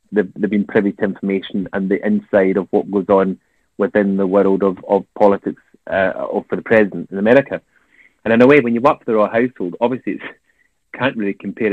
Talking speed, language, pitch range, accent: 210 wpm, English, 100-115 Hz, British